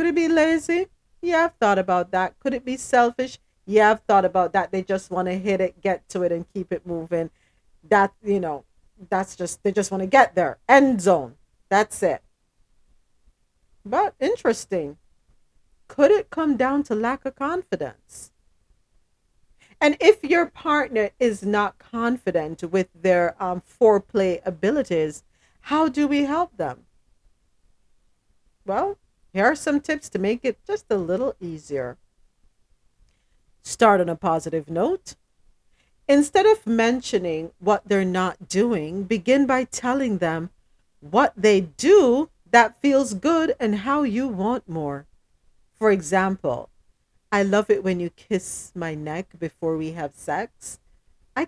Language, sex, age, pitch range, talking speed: English, female, 40-59, 180-260 Hz, 150 wpm